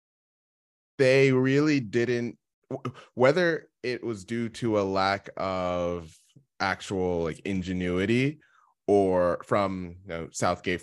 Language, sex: English, male